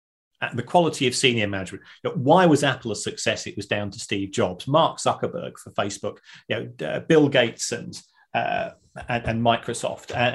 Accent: British